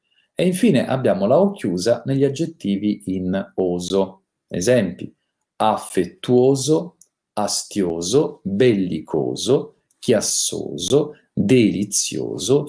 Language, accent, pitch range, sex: Italian, native, 95-135 Hz, male